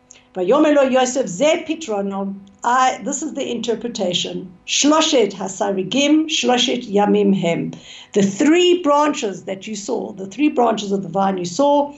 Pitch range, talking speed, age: 195-265 Hz, 95 wpm, 60-79